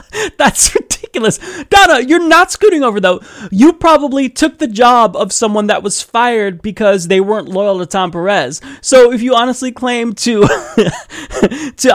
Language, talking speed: English, 160 wpm